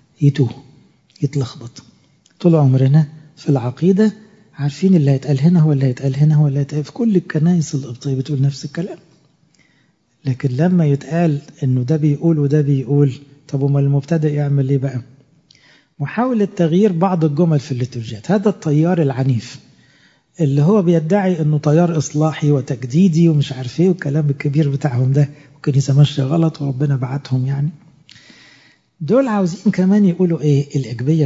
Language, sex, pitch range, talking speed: English, male, 135-165 Hz, 140 wpm